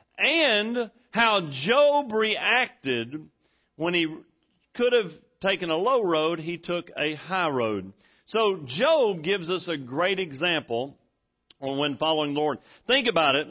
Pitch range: 175-250 Hz